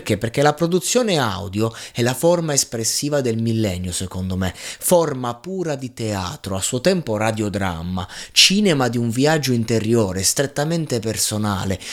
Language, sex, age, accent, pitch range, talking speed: Italian, male, 30-49, native, 105-135 Hz, 140 wpm